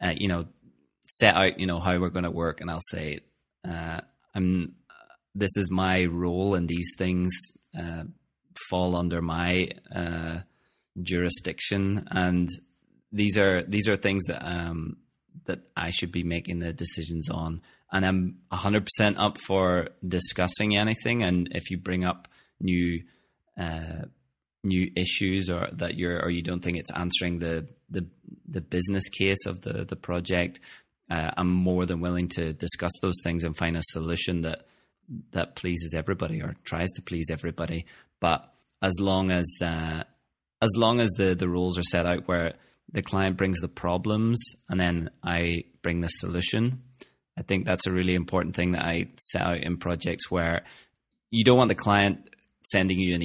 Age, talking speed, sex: 20-39, 170 wpm, male